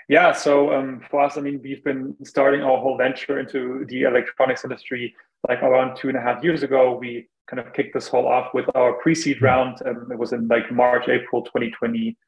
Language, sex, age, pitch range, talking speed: English, male, 20-39, 120-140 Hz, 220 wpm